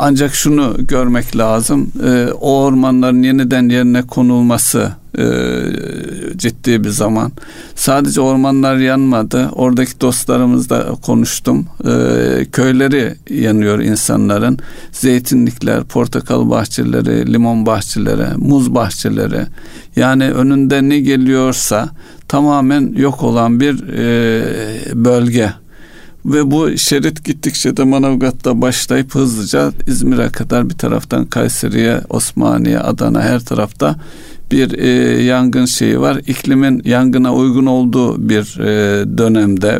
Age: 60-79